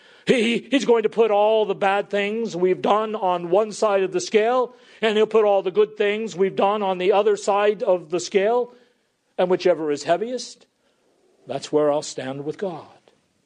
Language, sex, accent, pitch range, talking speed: English, male, American, 135-205 Hz, 185 wpm